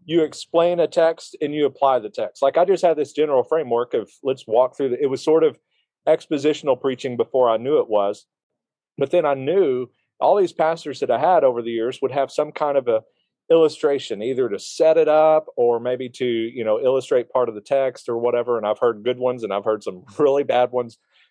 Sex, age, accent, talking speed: male, 40-59, American, 225 wpm